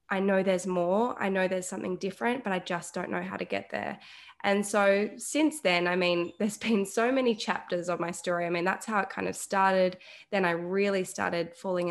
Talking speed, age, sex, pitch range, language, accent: 225 wpm, 20-39, female, 180-210 Hz, English, Australian